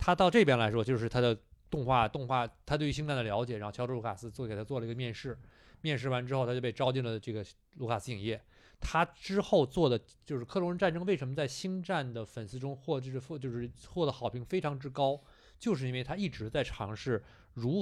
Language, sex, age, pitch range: Chinese, male, 20-39, 115-140 Hz